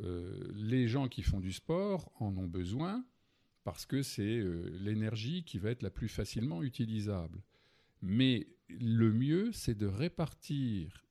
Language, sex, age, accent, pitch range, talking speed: French, male, 50-69, French, 95-130 Hz, 150 wpm